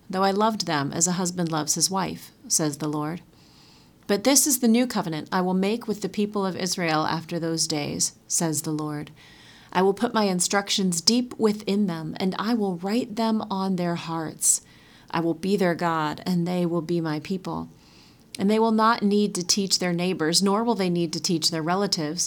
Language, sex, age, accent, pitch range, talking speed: English, female, 30-49, American, 165-205 Hz, 210 wpm